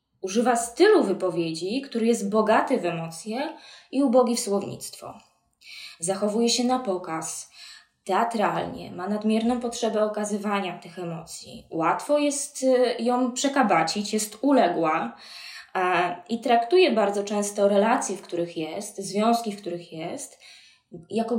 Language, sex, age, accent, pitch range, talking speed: Polish, female, 20-39, native, 195-240 Hz, 120 wpm